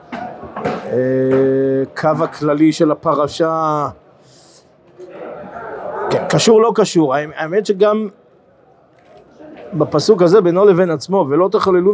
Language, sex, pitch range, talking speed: Hebrew, male, 145-190 Hz, 85 wpm